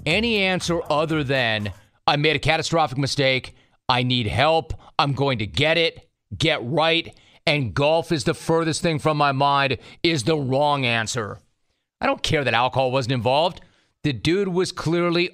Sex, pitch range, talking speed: male, 135-165 Hz, 170 wpm